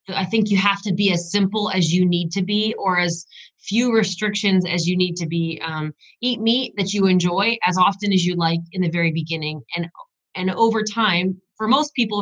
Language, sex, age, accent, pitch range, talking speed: English, female, 30-49, American, 170-205 Hz, 215 wpm